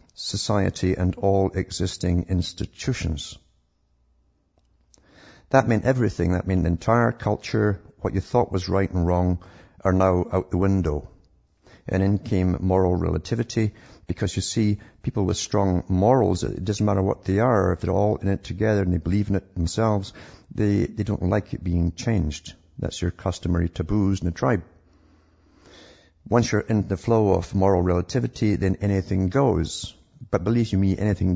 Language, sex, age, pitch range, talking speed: English, male, 50-69, 90-110 Hz, 165 wpm